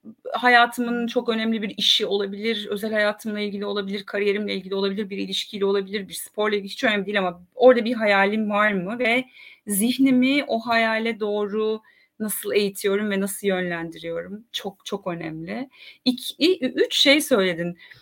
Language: Turkish